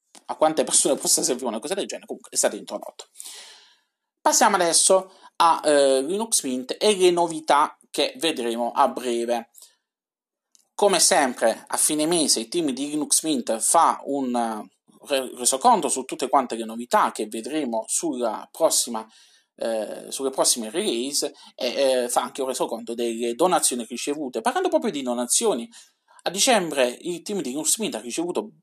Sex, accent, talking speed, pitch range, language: male, native, 155 wpm, 120-195 Hz, Italian